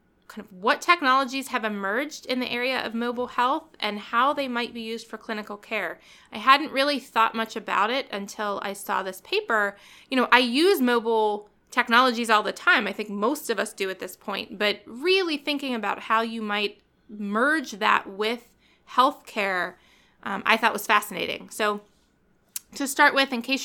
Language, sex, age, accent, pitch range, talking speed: English, female, 20-39, American, 210-255 Hz, 185 wpm